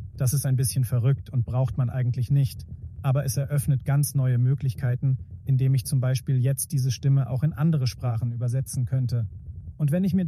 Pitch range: 125-150 Hz